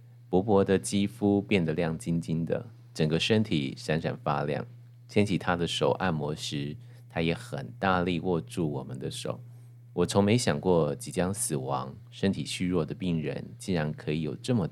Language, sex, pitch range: Chinese, male, 85-120 Hz